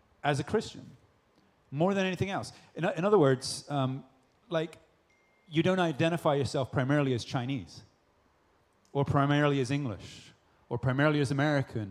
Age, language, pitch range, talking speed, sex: 30-49, English, 125-155 Hz, 140 wpm, male